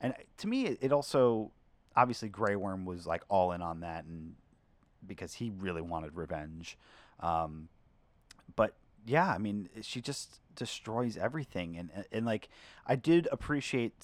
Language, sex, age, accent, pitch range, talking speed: English, male, 30-49, American, 90-115 Hz, 150 wpm